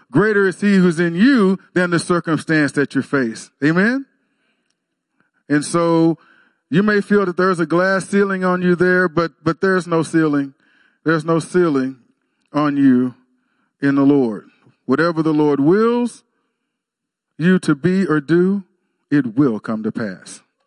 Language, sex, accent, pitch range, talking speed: English, male, American, 160-210 Hz, 155 wpm